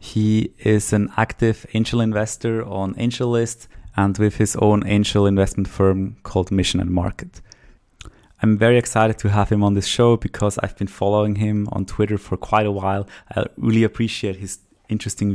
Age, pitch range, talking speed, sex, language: 20-39, 100-110 Hz, 170 wpm, male, English